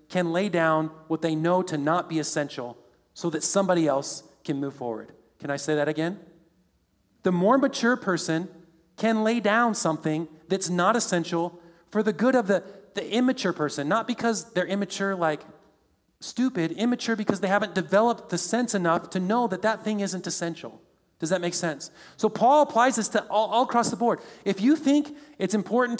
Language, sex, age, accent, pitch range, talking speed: English, male, 40-59, American, 165-220 Hz, 185 wpm